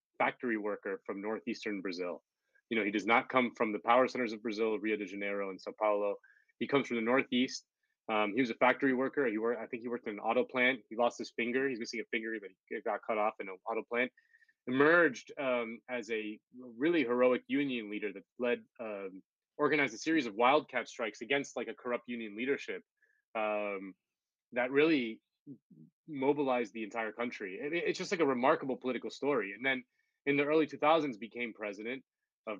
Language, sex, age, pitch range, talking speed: English, male, 20-39, 105-135 Hz, 195 wpm